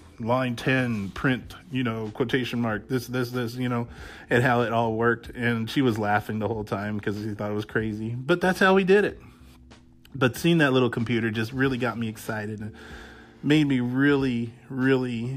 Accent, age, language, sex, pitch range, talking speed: American, 30-49, English, male, 105-125 Hz, 200 wpm